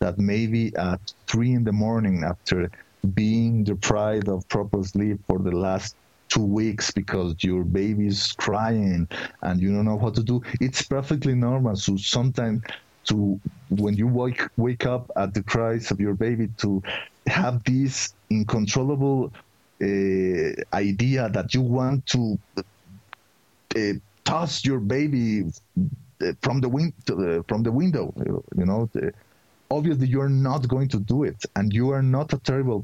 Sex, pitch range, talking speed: male, 100-130 Hz, 150 wpm